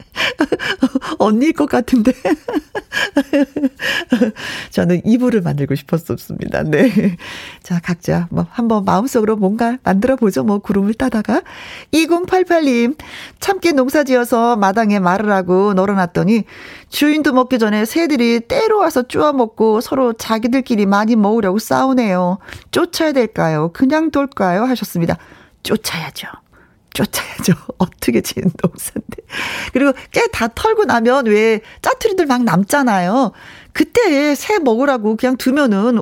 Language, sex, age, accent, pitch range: Korean, female, 40-59, native, 195-265 Hz